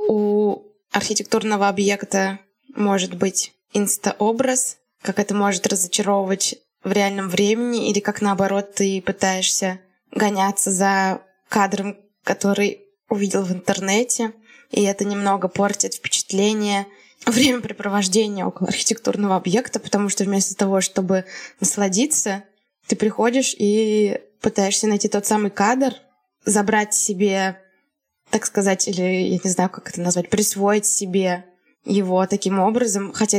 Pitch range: 195-220 Hz